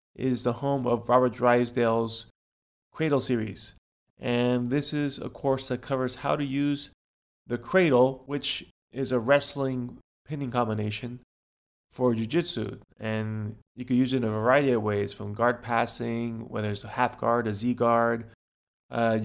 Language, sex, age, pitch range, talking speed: English, male, 20-39, 115-130 Hz, 155 wpm